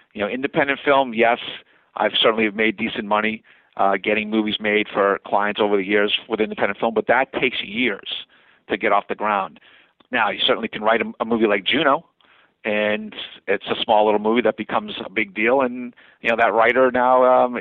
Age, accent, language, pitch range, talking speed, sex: 50-69, American, English, 105-135 Hz, 200 wpm, male